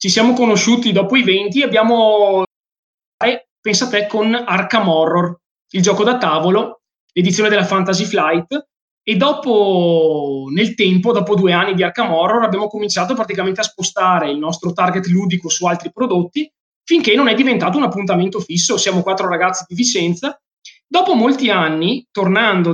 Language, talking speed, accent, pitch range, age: Italian, 155 wpm, native, 180-240 Hz, 20-39